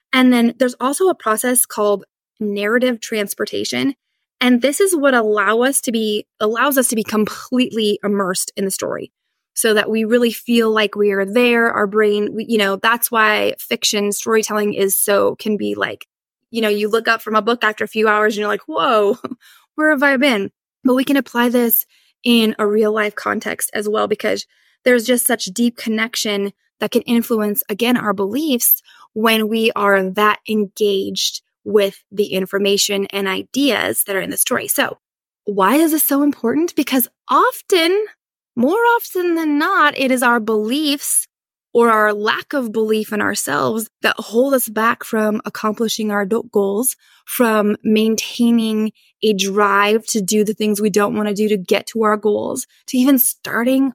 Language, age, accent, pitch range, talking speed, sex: English, 20-39, American, 210-250 Hz, 180 wpm, female